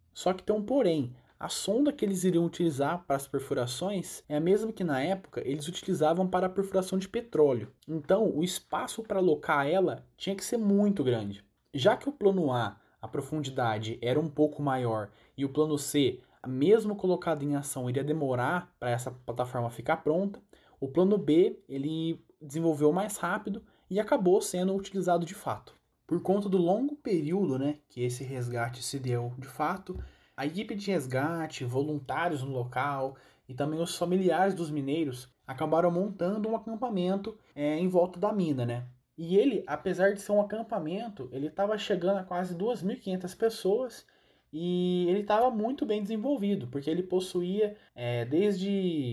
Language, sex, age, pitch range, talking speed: Portuguese, male, 20-39, 140-195 Hz, 165 wpm